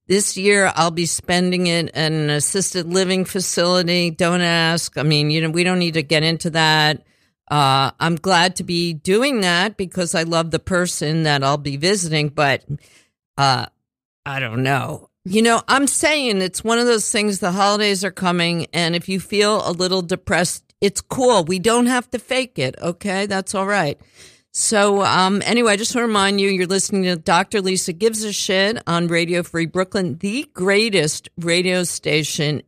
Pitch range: 155-195 Hz